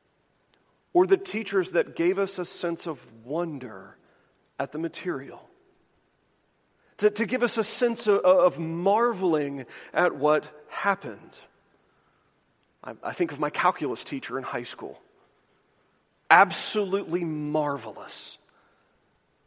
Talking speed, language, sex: 115 wpm, English, male